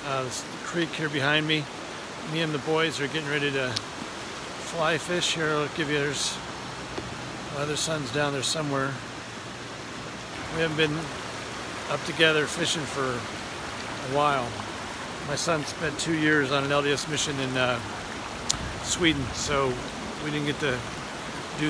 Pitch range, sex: 140-160 Hz, male